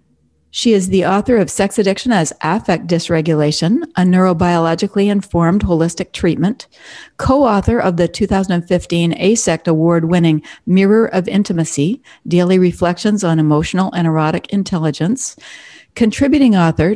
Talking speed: 115 wpm